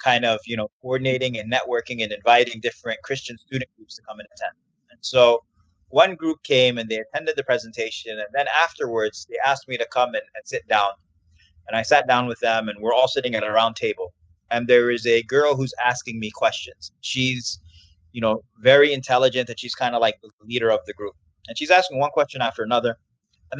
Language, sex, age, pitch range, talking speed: English, male, 20-39, 105-140 Hz, 215 wpm